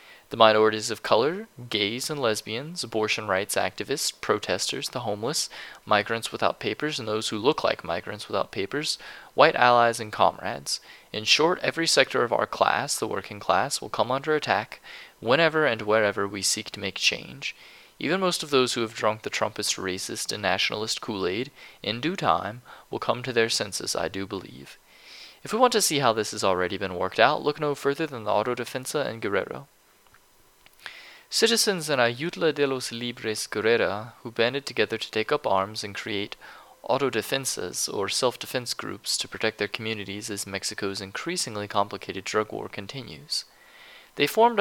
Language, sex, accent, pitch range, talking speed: English, male, American, 100-140 Hz, 170 wpm